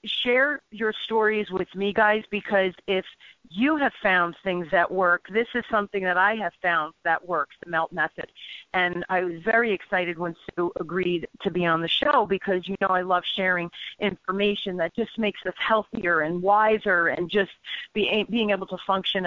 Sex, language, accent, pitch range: female, English, American, 175-210 Hz